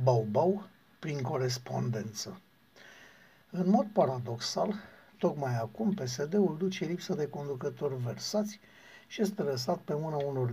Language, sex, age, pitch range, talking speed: Romanian, male, 60-79, 125-185 Hz, 115 wpm